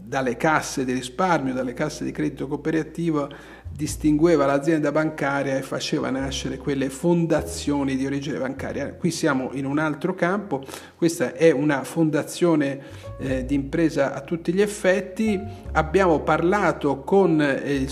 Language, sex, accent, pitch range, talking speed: Italian, male, native, 135-170 Hz, 140 wpm